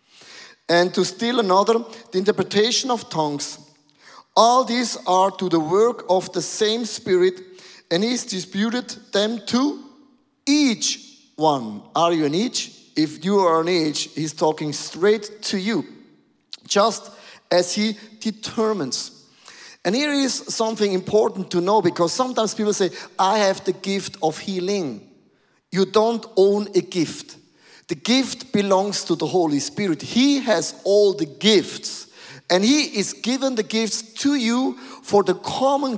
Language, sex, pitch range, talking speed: English, male, 180-235 Hz, 145 wpm